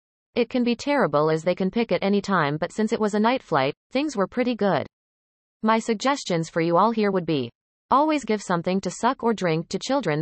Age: 30-49